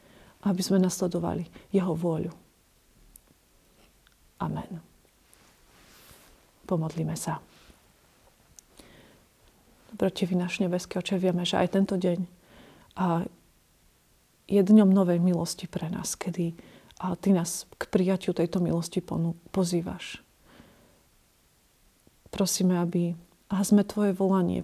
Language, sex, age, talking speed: Slovak, female, 40-59, 95 wpm